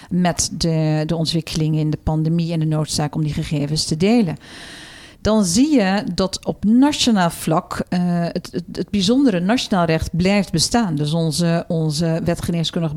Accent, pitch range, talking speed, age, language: Dutch, 165-205 Hz, 160 wpm, 50-69, Dutch